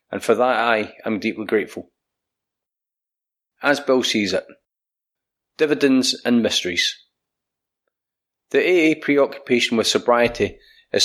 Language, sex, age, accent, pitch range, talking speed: English, male, 30-49, British, 110-135 Hz, 110 wpm